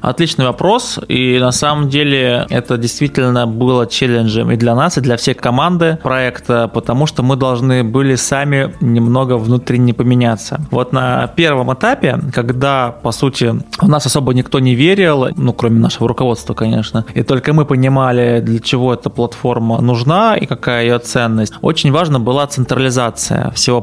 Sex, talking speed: male, 160 wpm